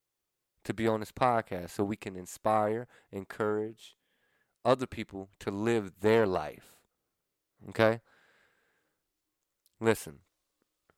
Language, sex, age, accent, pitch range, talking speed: English, male, 30-49, American, 95-115 Hz, 100 wpm